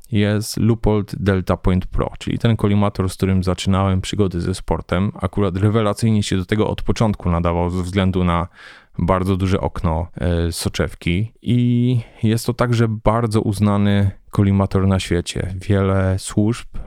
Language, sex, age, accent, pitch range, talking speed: Polish, male, 20-39, native, 95-110 Hz, 140 wpm